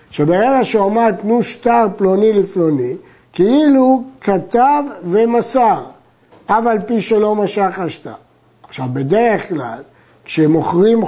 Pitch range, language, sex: 175-225 Hz, Hebrew, male